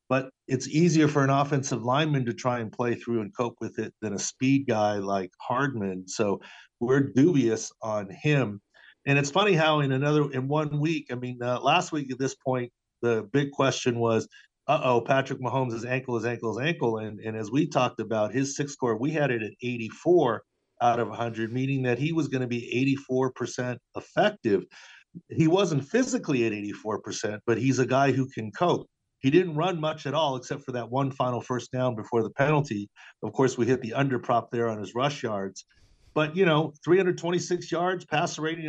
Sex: male